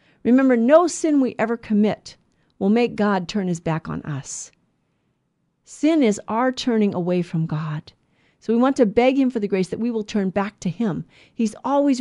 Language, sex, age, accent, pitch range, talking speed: English, female, 50-69, American, 175-240 Hz, 195 wpm